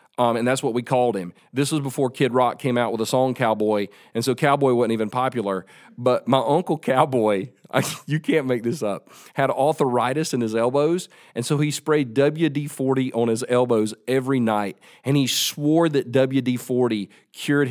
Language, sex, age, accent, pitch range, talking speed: English, male, 40-59, American, 115-150 Hz, 185 wpm